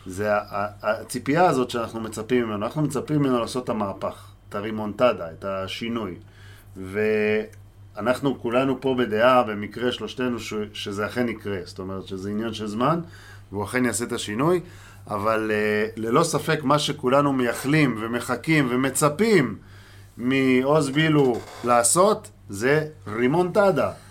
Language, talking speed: Hebrew, 125 wpm